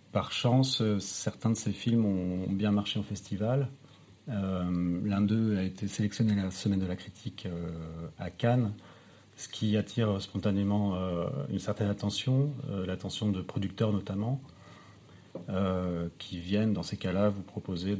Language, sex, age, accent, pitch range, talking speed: French, male, 40-59, French, 95-115 Hz, 155 wpm